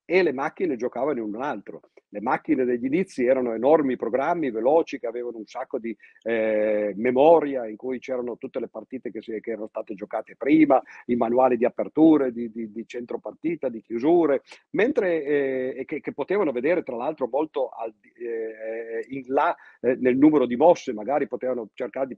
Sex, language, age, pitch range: male, Italian, 50-69, 115-150 Hz